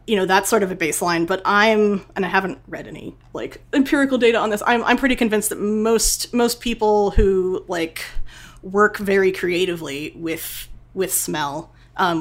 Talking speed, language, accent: 175 wpm, English, American